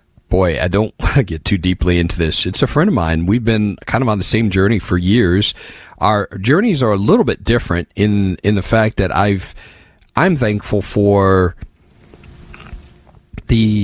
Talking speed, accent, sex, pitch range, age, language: 180 wpm, American, male, 90-120 Hz, 40-59, English